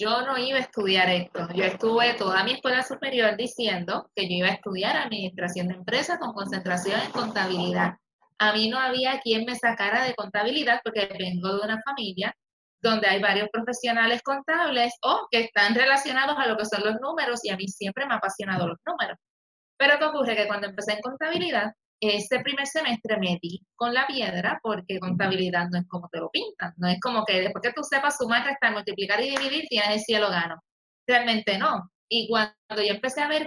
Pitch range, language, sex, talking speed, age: 195-250 Hz, Spanish, female, 205 wpm, 20-39